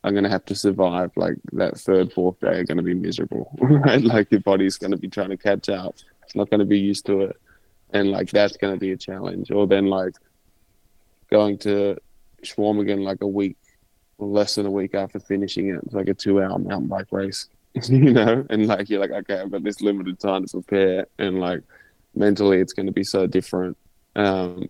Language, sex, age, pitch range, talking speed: English, male, 20-39, 95-105 Hz, 225 wpm